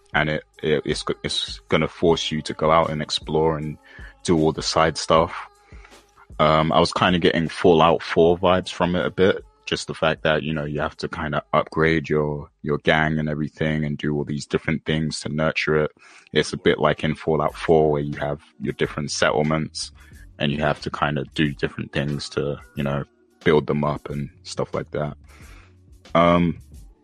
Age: 20-39